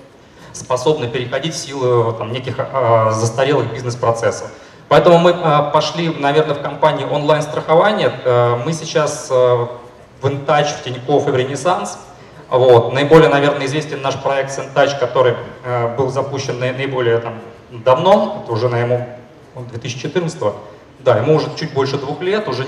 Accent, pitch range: native, 125-155 Hz